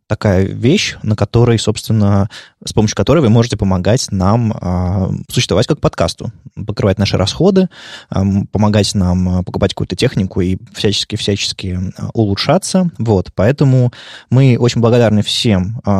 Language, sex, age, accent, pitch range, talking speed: Russian, male, 20-39, native, 100-130 Hz, 135 wpm